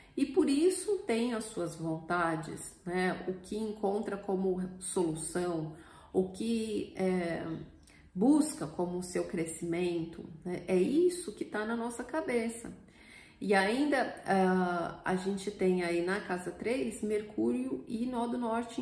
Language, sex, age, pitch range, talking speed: Portuguese, female, 40-59, 180-245 Hz, 130 wpm